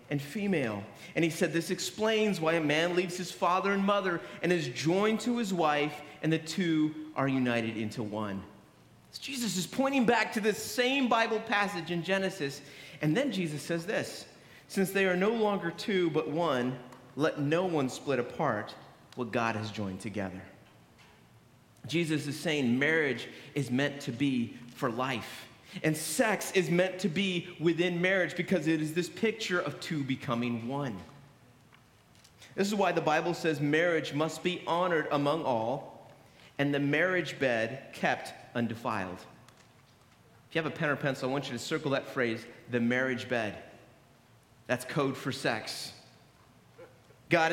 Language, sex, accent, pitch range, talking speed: English, male, American, 125-180 Hz, 165 wpm